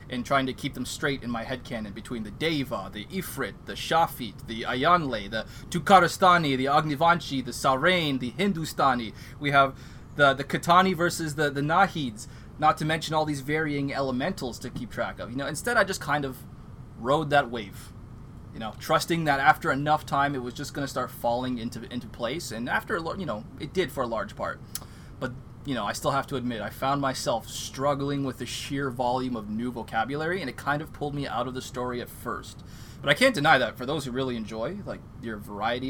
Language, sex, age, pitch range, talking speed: English, male, 20-39, 120-145 Hz, 210 wpm